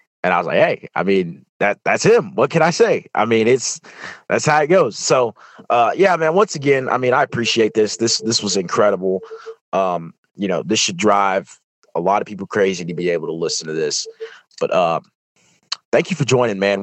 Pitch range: 90-125 Hz